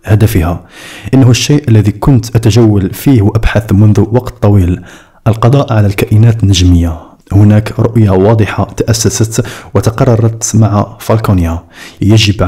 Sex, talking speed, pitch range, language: male, 110 wpm, 95-115 Hz, Arabic